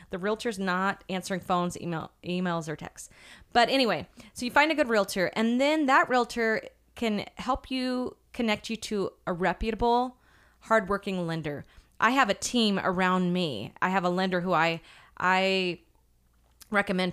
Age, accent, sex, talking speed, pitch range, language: 20-39, American, female, 160 wpm, 175-225 Hz, English